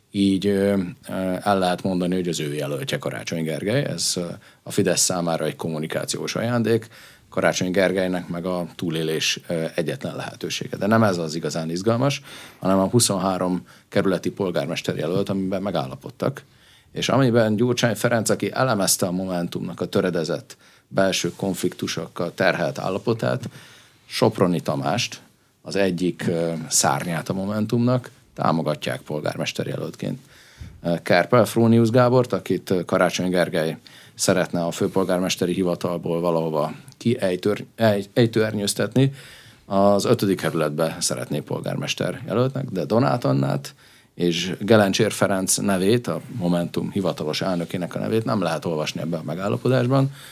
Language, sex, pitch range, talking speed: Hungarian, male, 85-115 Hz, 120 wpm